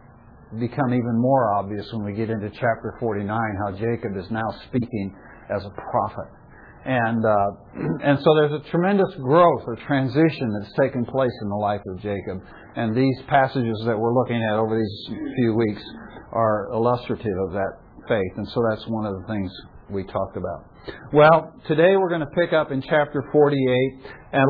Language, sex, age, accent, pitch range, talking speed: English, male, 60-79, American, 115-150 Hz, 180 wpm